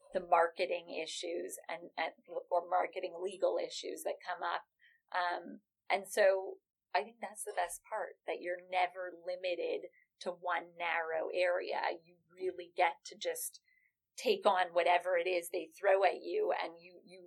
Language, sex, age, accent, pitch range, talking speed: English, female, 30-49, American, 175-225 Hz, 160 wpm